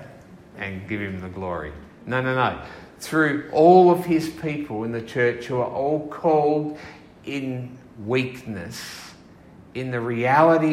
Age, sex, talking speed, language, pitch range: 50-69, male, 140 wpm, English, 120-160 Hz